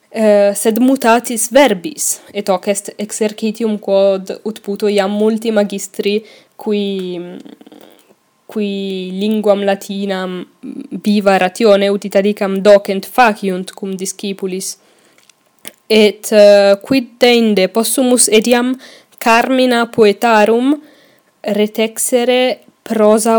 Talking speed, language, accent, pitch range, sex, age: 85 wpm, English, Italian, 195-225 Hz, female, 10-29